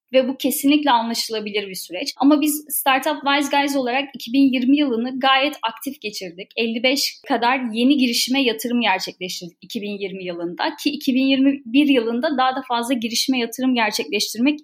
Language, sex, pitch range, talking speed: Turkish, female, 240-280 Hz, 140 wpm